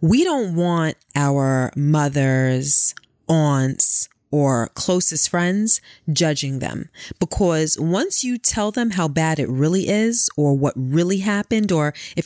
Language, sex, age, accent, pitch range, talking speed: English, female, 30-49, American, 145-200 Hz, 130 wpm